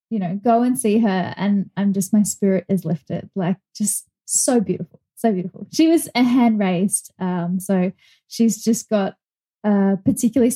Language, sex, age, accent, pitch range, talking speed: English, female, 10-29, Australian, 200-235 Hz, 175 wpm